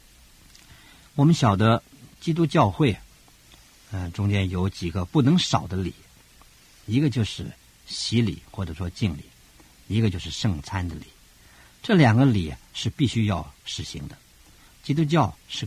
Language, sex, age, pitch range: Chinese, male, 50-69, 85-120 Hz